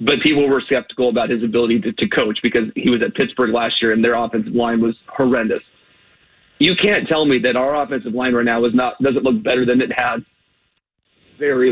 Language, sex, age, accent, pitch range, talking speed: English, male, 30-49, American, 120-135 Hz, 220 wpm